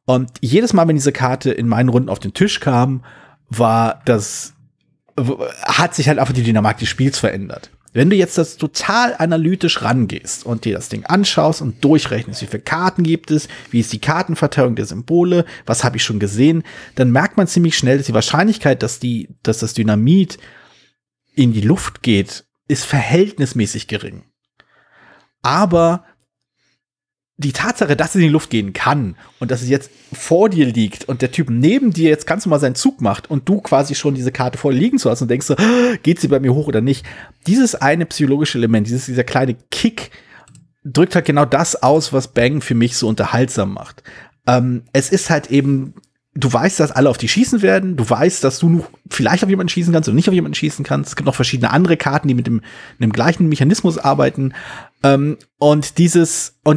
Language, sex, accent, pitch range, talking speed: German, male, German, 120-165 Hz, 200 wpm